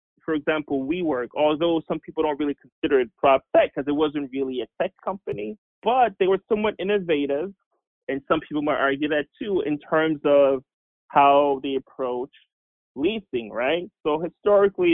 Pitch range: 135-180 Hz